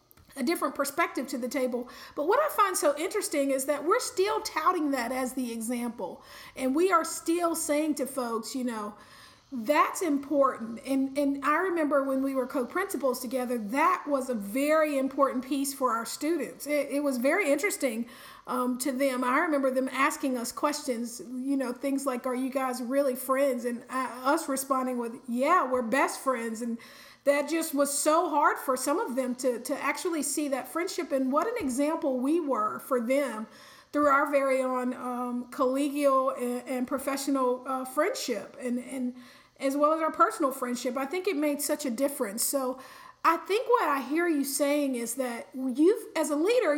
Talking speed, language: 185 wpm, English